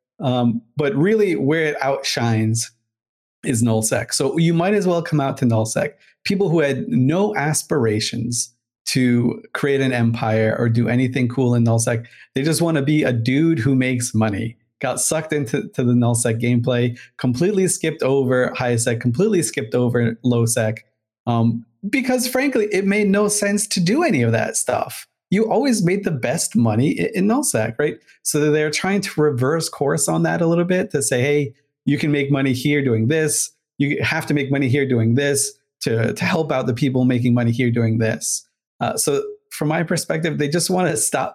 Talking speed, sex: 185 wpm, male